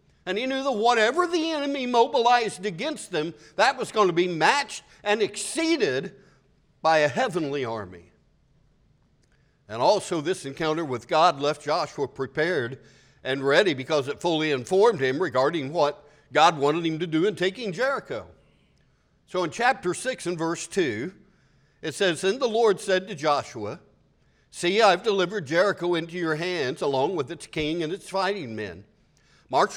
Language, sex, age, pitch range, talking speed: English, male, 60-79, 145-200 Hz, 160 wpm